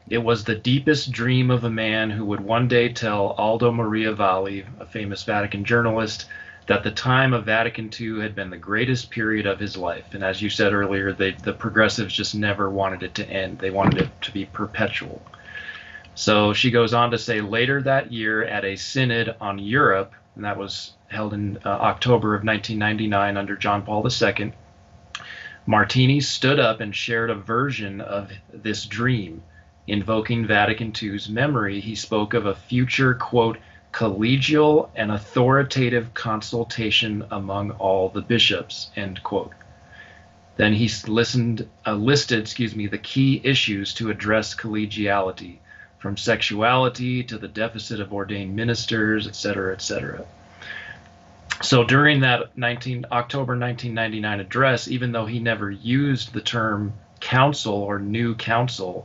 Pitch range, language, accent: 100-120 Hz, English, American